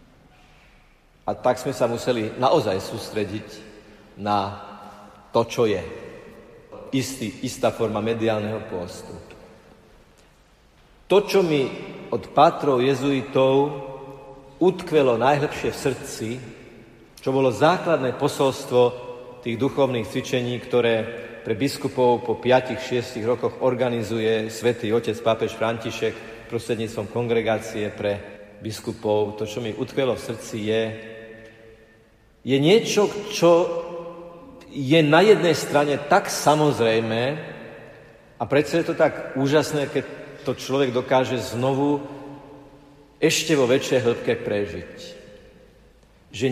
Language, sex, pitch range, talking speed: Slovak, male, 115-150 Hz, 105 wpm